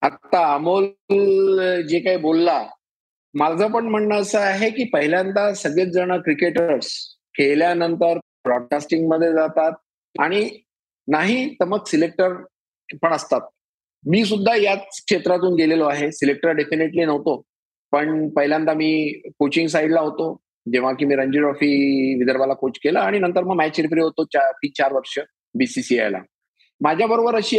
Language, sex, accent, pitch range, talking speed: Marathi, male, native, 160-205 Hz, 135 wpm